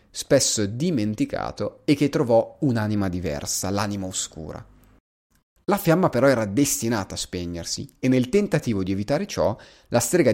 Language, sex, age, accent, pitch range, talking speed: Italian, male, 30-49, native, 95-130 Hz, 140 wpm